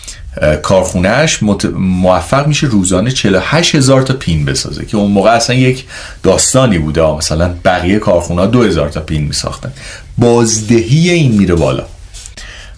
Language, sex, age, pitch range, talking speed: Persian, male, 40-59, 85-130 Hz, 140 wpm